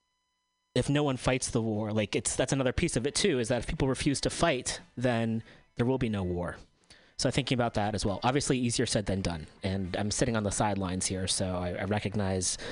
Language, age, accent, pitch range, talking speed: English, 30-49, American, 105-135 Hz, 235 wpm